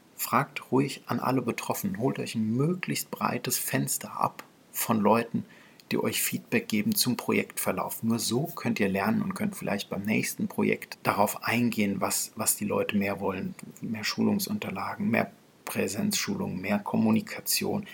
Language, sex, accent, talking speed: German, male, German, 150 wpm